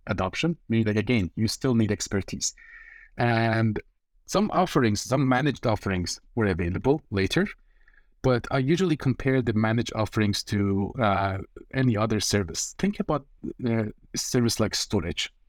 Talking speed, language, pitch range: 135 wpm, English, 105-140 Hz